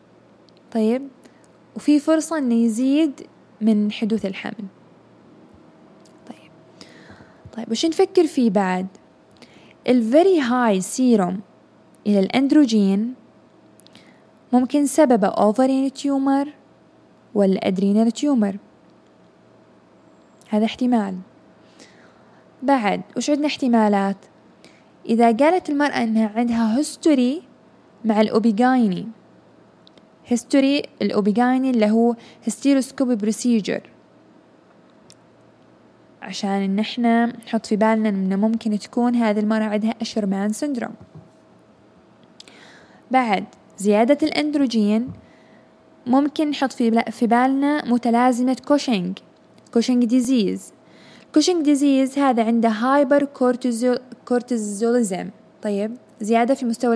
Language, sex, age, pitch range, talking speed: Arabic, female, 10-29, 215-270 Hz, 90 wpm